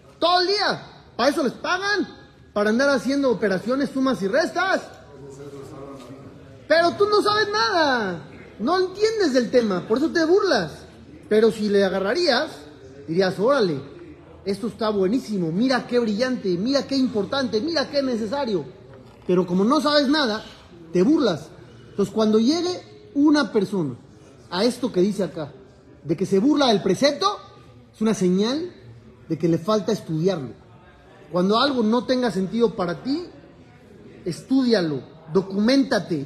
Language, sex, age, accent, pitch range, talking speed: Spanish, male, 40-59, Mexican, 180-275 Hz, 140 wpm